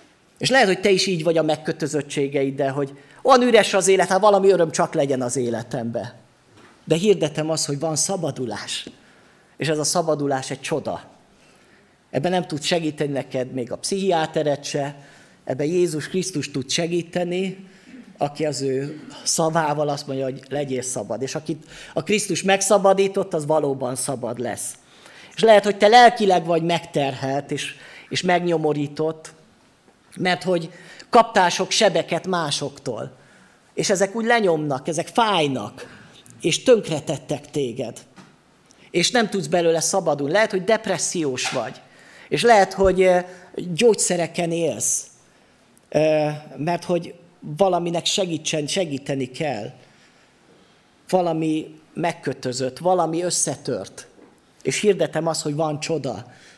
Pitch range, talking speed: 145-185 Hz, 130 wpm